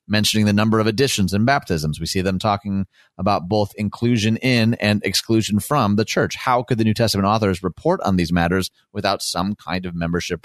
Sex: male